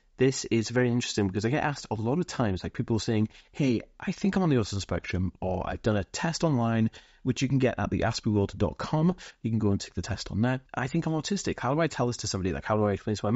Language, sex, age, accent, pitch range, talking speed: English, male, 30-49, British, 105-140 Hz, 280 wpm